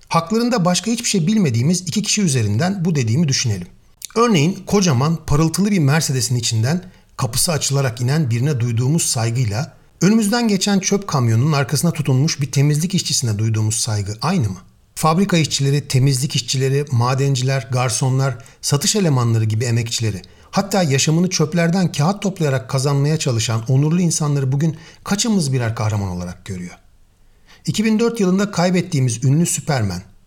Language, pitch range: Turkish, 115-170 Hz